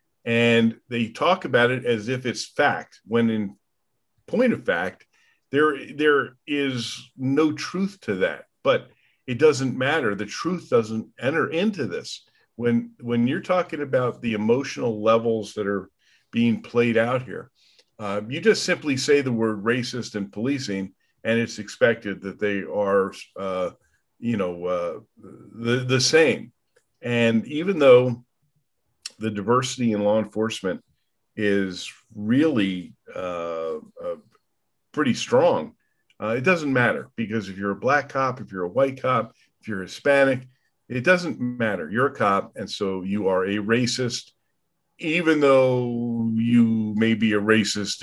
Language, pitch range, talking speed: English, 105-130 Hz, 150 wpm